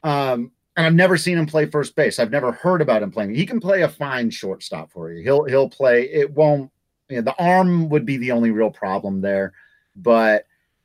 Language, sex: English, male